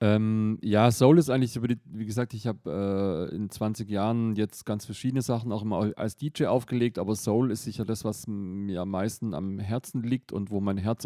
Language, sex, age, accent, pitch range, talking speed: English, male, 30-49, German, 105-125 Hz, 195 wpm